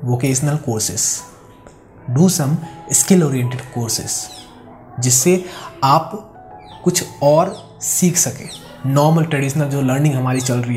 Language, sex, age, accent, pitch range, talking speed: Hindi, male, 20-39, native, 125-150 Hz, 110 wpm